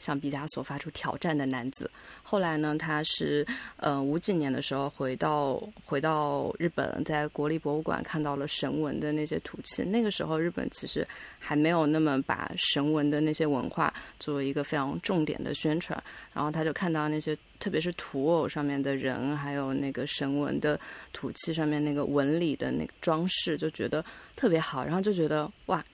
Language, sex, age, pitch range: Chinese, female, 20-39, 145-165 Hz